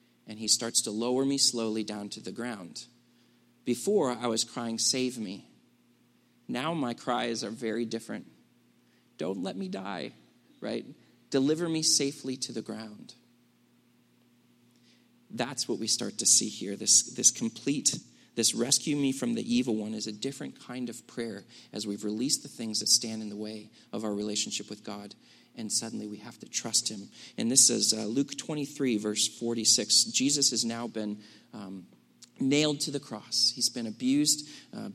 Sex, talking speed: male, 170 wpm